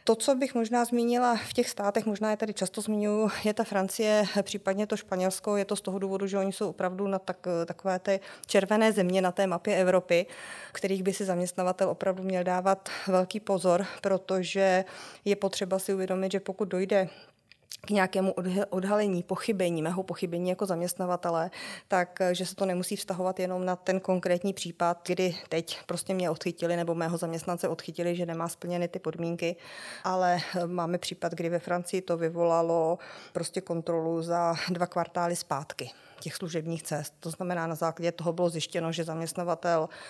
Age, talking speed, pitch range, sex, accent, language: 20-39, 170 wpm, 170-195 Hz, female, native, Czech